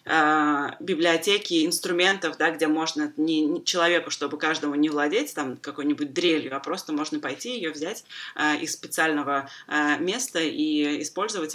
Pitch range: 150-180 Hz